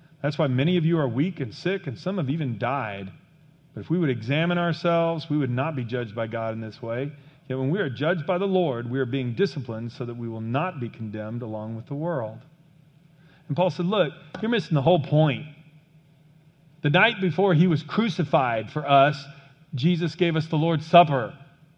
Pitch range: 150-185 Hz